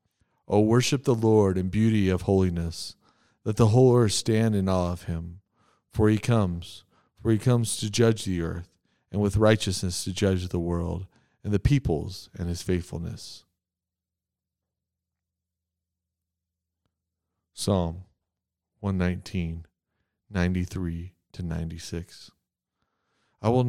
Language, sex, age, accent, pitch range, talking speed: English, male, 40-59, American, 90-110 Hz, 115 wpm